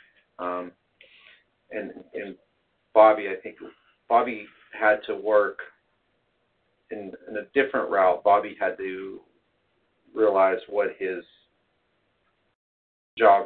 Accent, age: American, 40-59